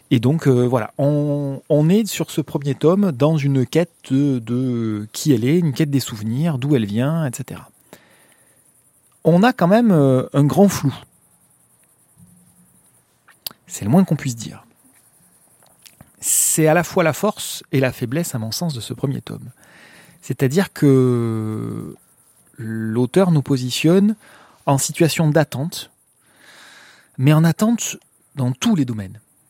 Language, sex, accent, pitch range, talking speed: French, male, French, 130-180 Hz, 145 wpm